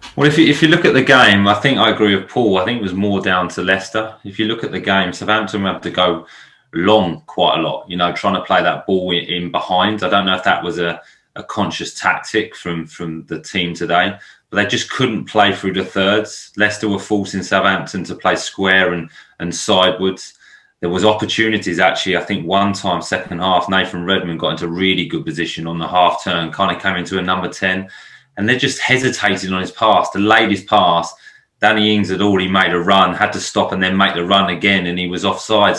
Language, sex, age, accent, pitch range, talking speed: English, male, 20-39, British, 90-105 Hz, 230 wpm